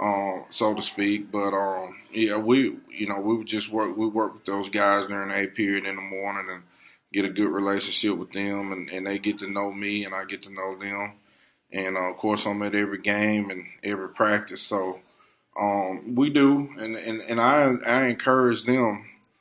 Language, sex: English, male